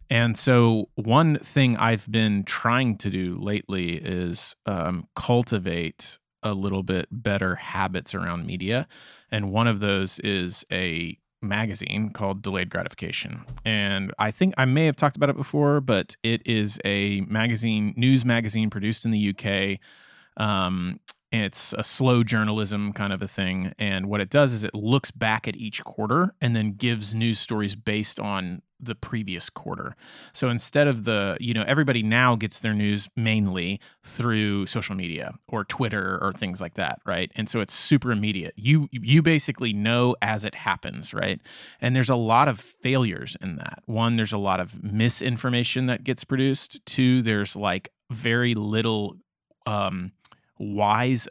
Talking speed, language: 165 wpm, English